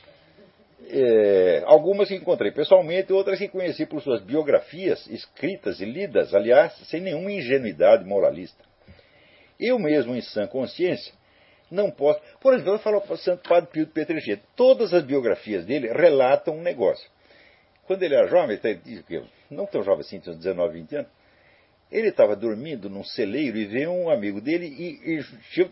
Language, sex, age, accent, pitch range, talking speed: Portuguese, male, 60-79, Brazilian, 165-275 Hz, 170 wpm